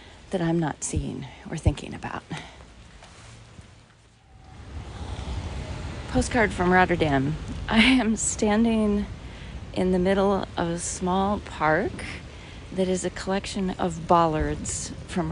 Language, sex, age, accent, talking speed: English, female, 40-59, American, 105 wpm